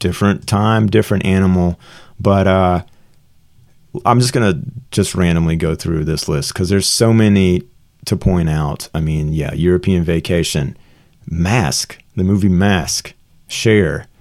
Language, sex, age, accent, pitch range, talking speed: English, male, 30-49, American, 90-115 Hz, 140 wpm